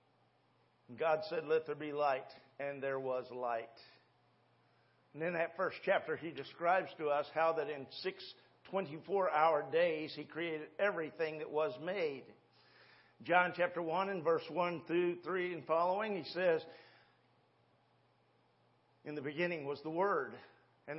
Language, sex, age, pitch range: English, male, 50-69, 160-205 Hz